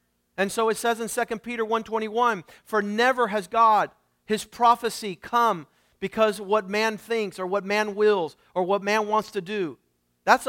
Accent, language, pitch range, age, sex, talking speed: American, English, 200-240 Hz, 40-59, male, 170 wpm